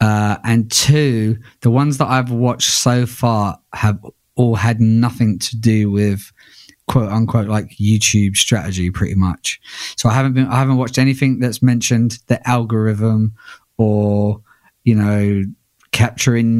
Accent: British